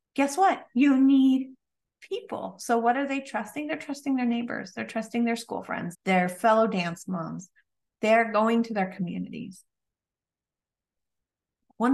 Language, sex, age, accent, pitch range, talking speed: English, female, 30-49, American, 170-225 Hz, 145 wpm